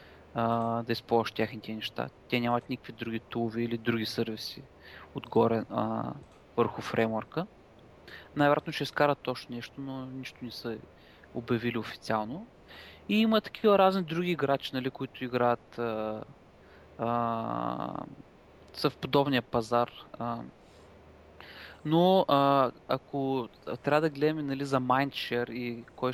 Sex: male